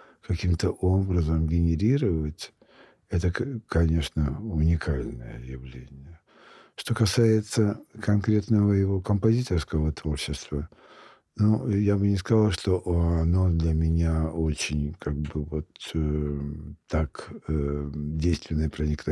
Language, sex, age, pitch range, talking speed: Russian, male, 60-79, 80-95 Hz, 95 wpm